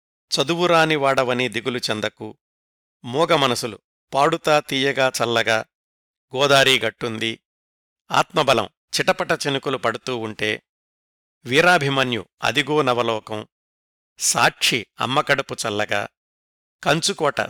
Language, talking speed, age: Telugu, 70 wpm, 50-69